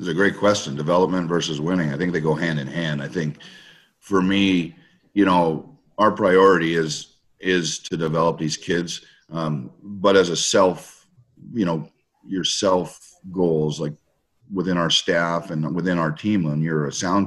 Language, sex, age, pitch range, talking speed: English, male, 40-59, 75-90 Hz, 175 wpm